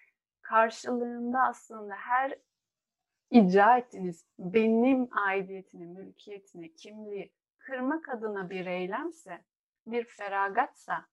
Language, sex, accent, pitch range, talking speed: Turkish, female, native, 185-240 Hz, 80 wpm